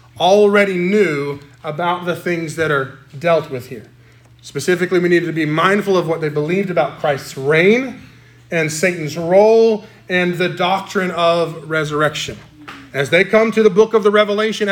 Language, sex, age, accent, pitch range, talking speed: English, male, 30-49, American, 155-200 Hz, 165 wpm